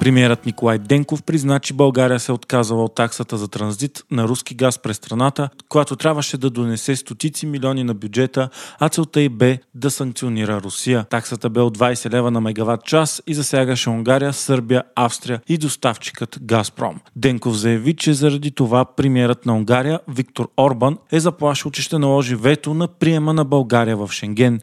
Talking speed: 170 wpm